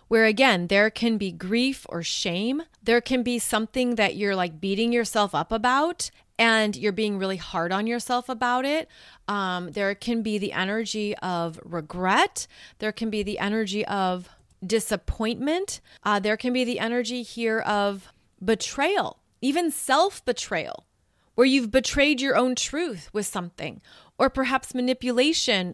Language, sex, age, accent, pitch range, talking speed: English, female, 30-49, American, 210-255 Hz, 150 wpm